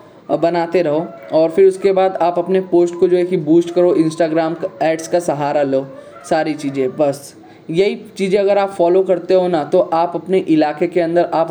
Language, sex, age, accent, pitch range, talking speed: Hindi, male, 20-39, native, 155-185 Hz, 200 wpm